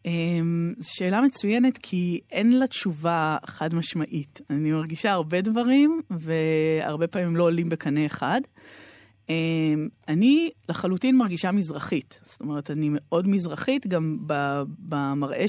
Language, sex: Hebrew, female